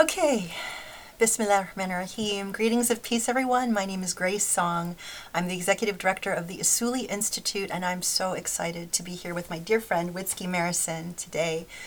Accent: American